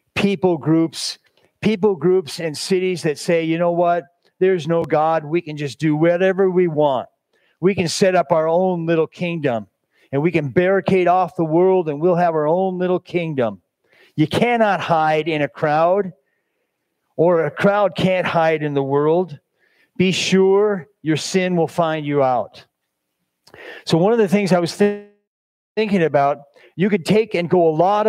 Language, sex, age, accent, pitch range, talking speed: English, male, 40-59, American, 165-200 Hz, 175 wpm